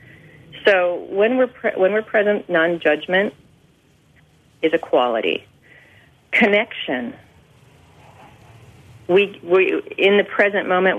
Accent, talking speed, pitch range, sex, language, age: American, 100 wpm, 150-200 Hz, female, English, 40-59